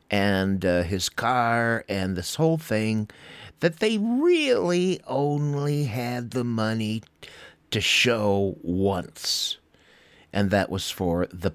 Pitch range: 95-150 Hz